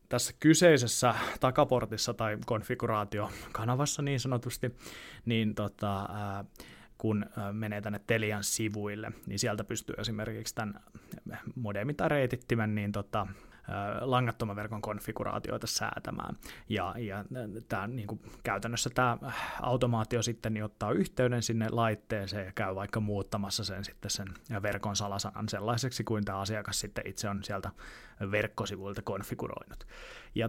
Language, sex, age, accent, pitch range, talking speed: Finnish, male, 20-39, native, 105-120 Hz, 120 wpm